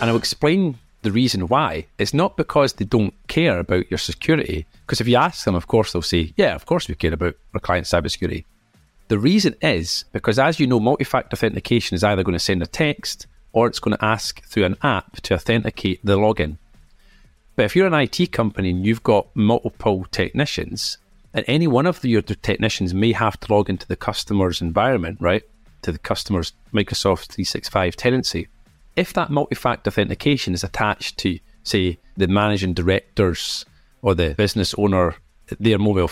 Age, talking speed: 40-59, 185 wpm